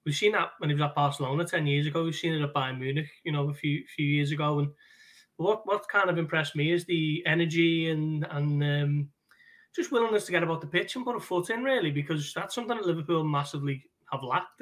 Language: English